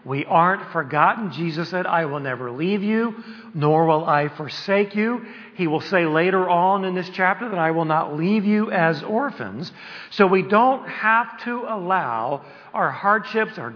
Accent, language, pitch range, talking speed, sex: American, English, 145-200 Hz, 175 wpm, male